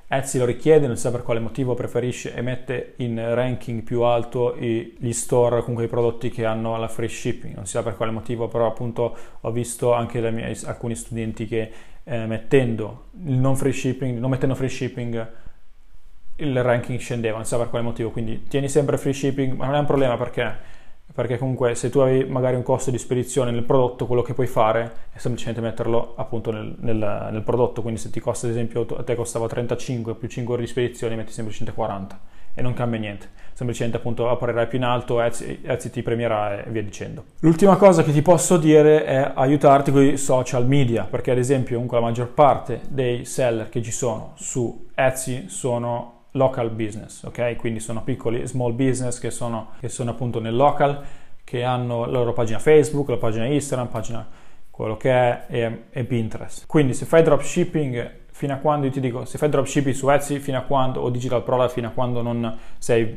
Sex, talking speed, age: male, 200 wpm, 20-39